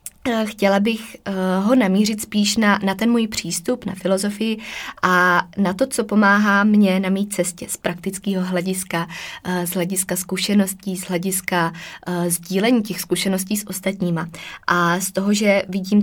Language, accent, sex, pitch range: Czech, native, female, 175-200 Hz